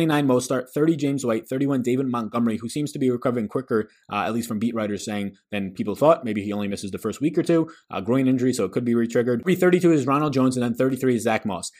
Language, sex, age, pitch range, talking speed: English, male, 20-39, 110-135 Hz, 270 wpm